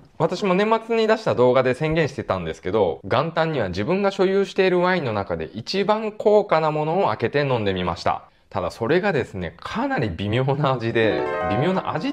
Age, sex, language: 20-39, male, Japanese